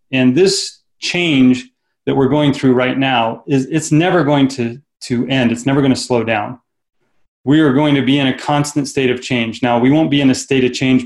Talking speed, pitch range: 220 wpm, 125-145 Hz